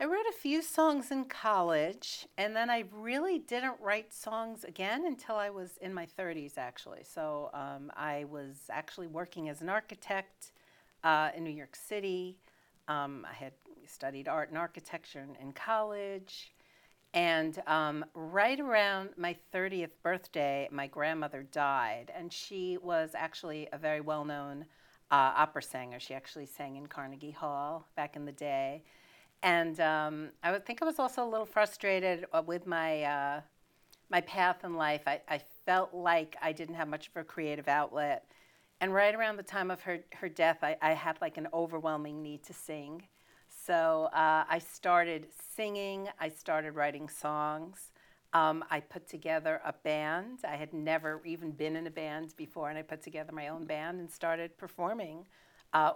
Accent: American